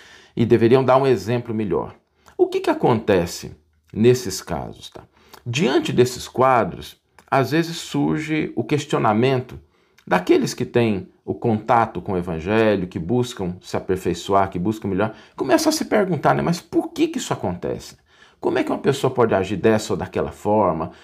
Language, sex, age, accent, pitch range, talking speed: Portuguese, male, 50-69, Brazilian, 105-155 Hz, 165 wpm